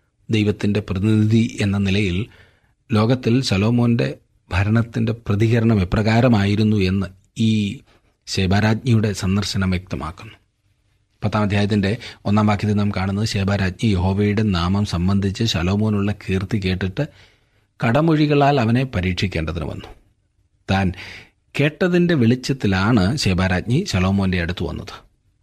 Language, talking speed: Malayalam, 85 wpm